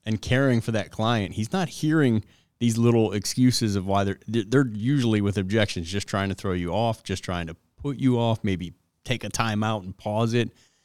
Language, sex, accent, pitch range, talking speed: English, male, American, 90-110 Hz, 210 wpm